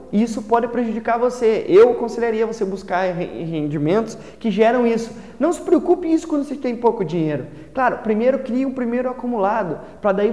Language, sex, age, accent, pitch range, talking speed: Portuguese, male, 20-39, Brazilian, 185-235 Hz, 170 wpm